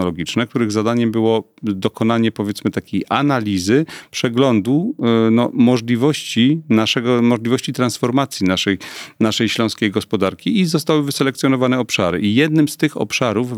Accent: native